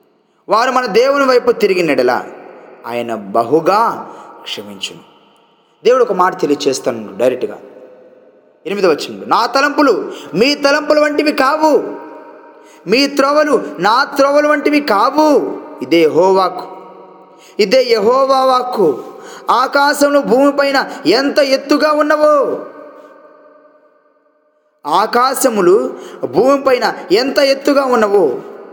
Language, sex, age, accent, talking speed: Telugu, male, 20-39, native, 90 wpm